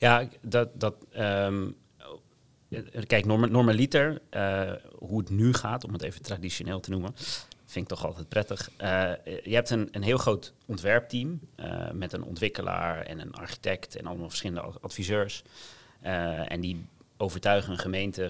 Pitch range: 90-115 Hz